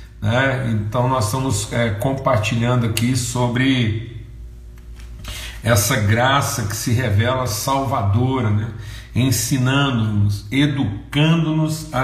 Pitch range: 105-135 Hz